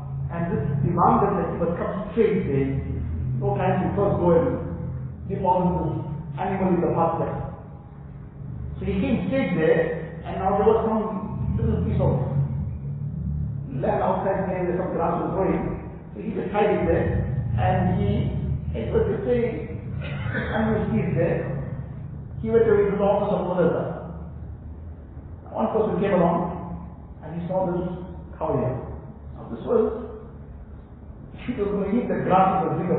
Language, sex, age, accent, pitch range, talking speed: English, male, 50-69, Indian, 130-195 Hz, 160 wpm